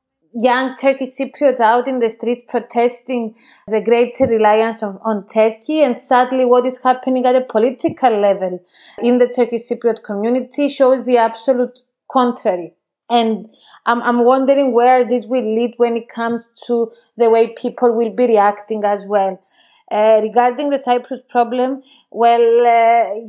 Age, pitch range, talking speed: 30-49, 220-250 Hz, 150 wpm